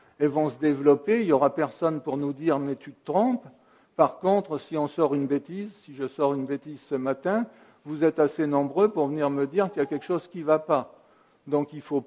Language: English